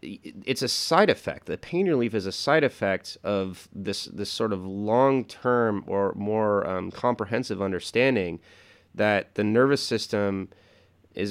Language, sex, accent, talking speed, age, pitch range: English, male, American, 145 wpm, 30-49, 95-115 Hz